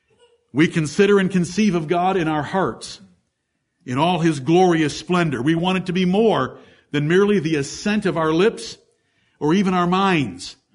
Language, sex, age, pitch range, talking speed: English, male, 60-79, 155-190 Hz, 175 wpm